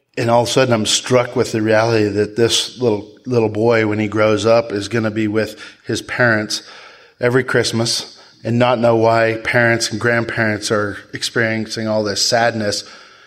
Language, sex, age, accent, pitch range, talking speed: English, male, 30-49, American, 105-115 Hz, 180 wpm